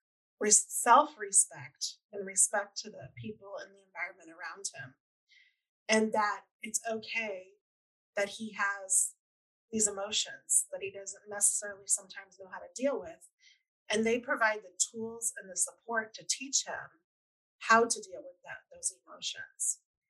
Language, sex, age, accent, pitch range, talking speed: English, female, 30-49, American, 200-250 Hz, 145 wpm